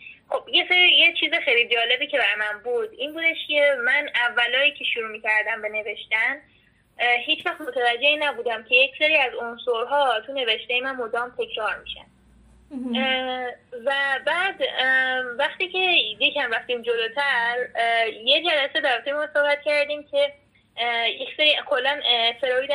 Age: 10-29